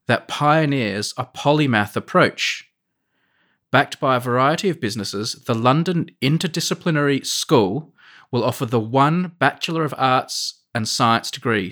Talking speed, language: 130 wpm, English